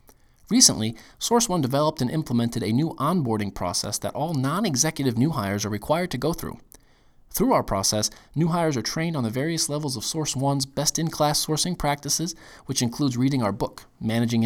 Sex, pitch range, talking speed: male, 110-150 Hz, 170 wpm